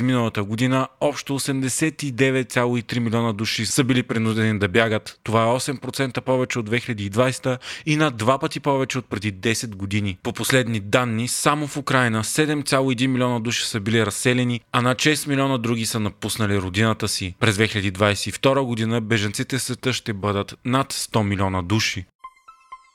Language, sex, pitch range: Bulgarian, male, 115-140 Hz